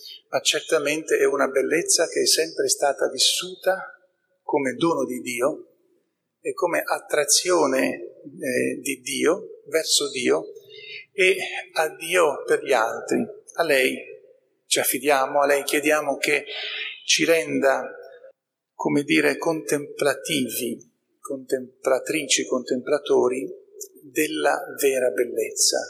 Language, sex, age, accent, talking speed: Italian, male, 40-59, native, 105 wpm